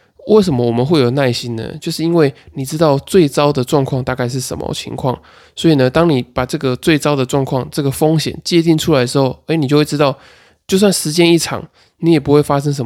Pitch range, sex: 125-155 Hz, male